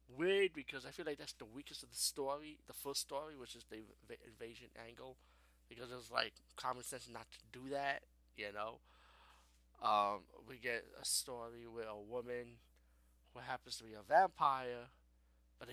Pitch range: 95-130 Hz